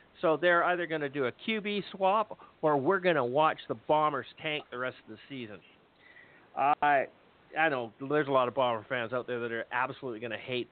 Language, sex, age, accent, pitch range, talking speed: English, male, 50-69, American, 140-190 Hz, 225 wpm